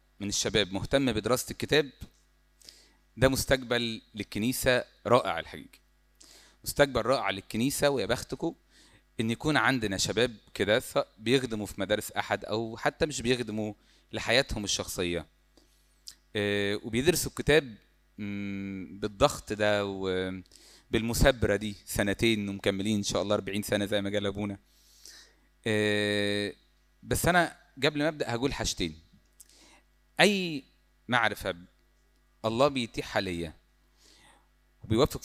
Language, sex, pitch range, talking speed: Arabic, male, 100-135 Hz, 100 wpm